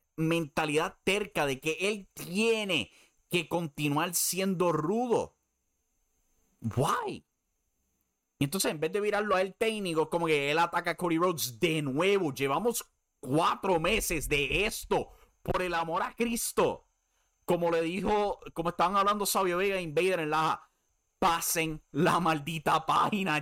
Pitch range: 150-195 Hz